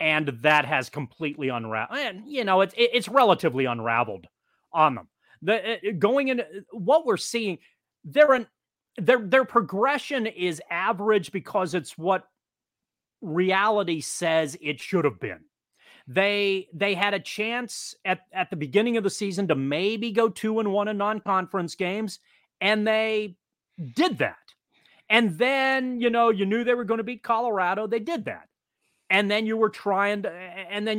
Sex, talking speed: male, 160 wpm